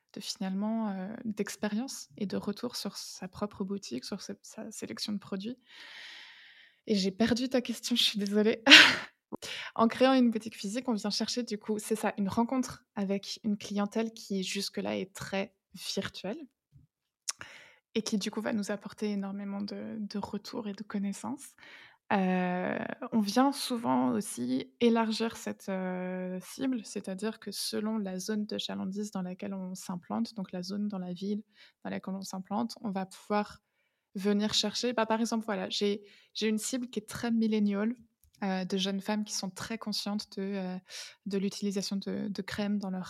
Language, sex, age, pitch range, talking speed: French, female, 20-39, 195-225 Hz, 175 wpm